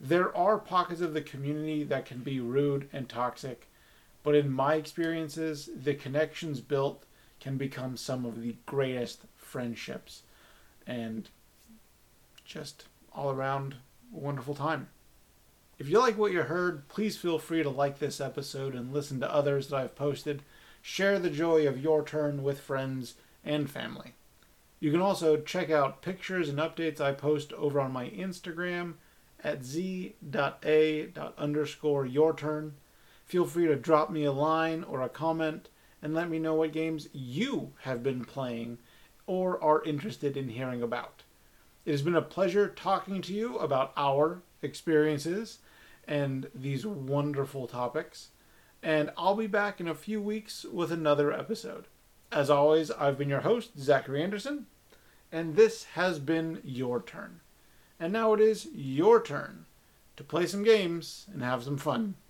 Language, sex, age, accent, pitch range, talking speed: English, male, 30-49, American, 135-170 Hz, 155 wpm